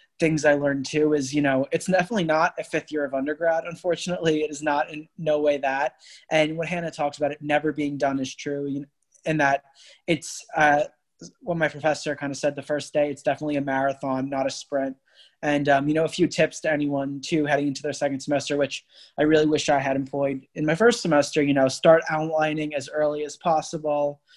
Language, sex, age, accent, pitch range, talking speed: English, male, 20-39, American, 140-155 Hz, 215 wpm